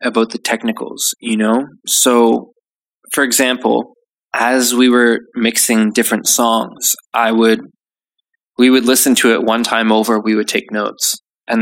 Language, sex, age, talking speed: English, male, 20-39, 150 wpm